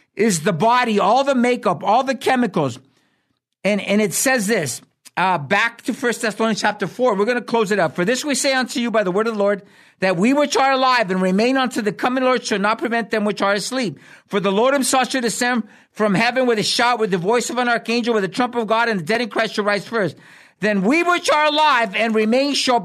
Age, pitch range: 50-69, 205-265 Hz